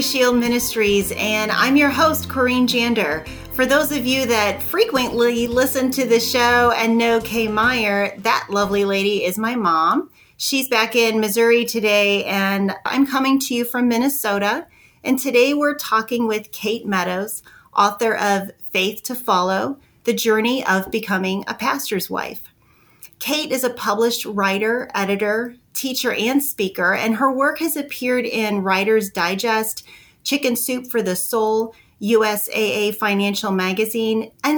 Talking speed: 145 wpm